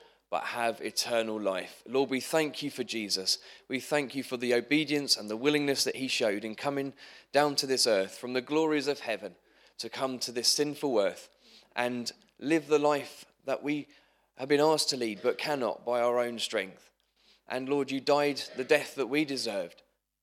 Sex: male